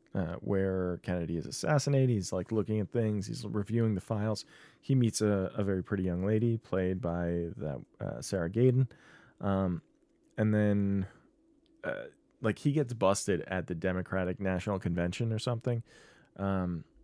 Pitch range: 85-115 Hz